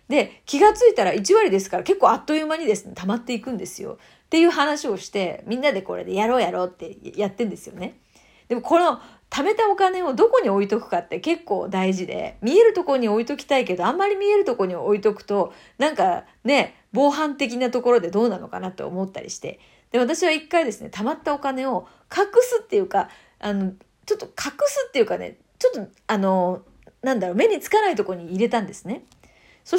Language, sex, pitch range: Japanese, female, 210-335 Hz